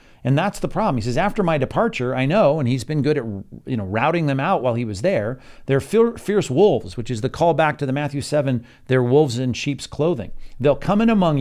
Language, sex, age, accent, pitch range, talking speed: English, male, 50-69, American, 125-165 Hz, 240 wpm